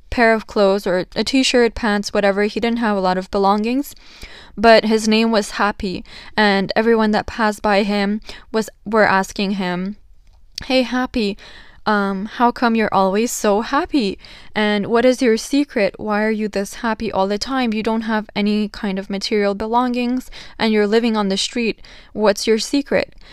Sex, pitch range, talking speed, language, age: female, 200-230 Hz, 175 wpm, English, 10-29